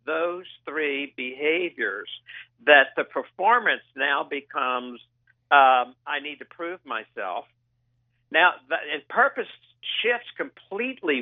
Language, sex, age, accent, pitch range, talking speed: English, male, 60-79, American, 120-160 Hz, 105 wpm